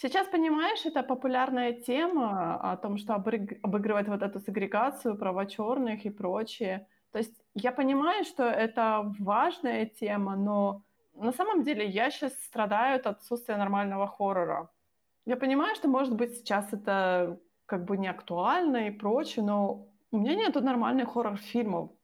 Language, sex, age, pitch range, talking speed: Ukrainian, female, 20-39, 205-265 Hz, 145 wpm